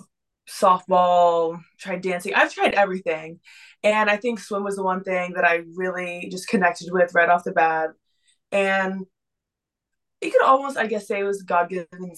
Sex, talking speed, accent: female, 170 wpm, American